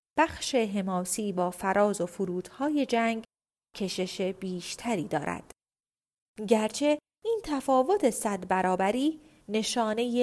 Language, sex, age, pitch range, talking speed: Persian, female, 30-49, 200-255 Hz, 95 wpm